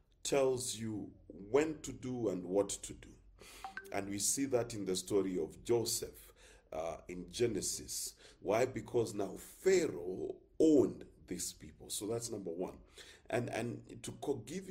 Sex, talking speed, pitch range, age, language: male, 145 wpm, 100-145 Hz, 40-59, English